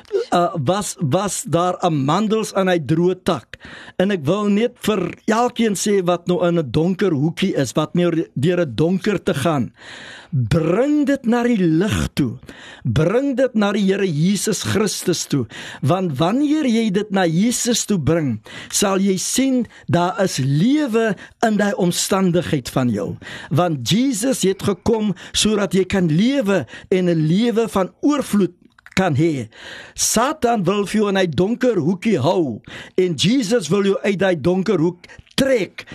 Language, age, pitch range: Finnish, 60-79, 170-225 Hz